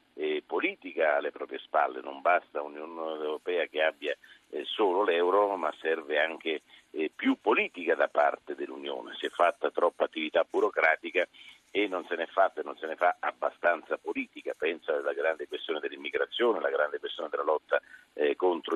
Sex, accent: male, native